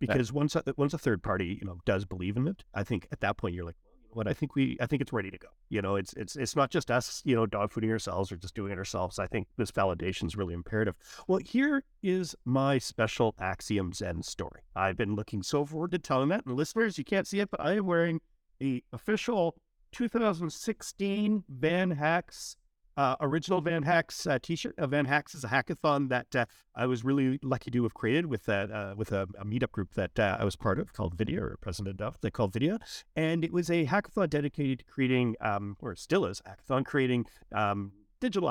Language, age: English, 40-59